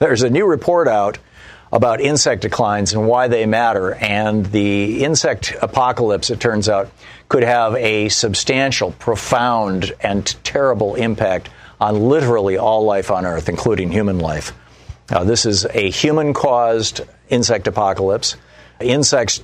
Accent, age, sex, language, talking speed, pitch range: American, 50-69, male, English, 135 wpm, 100-120 Hz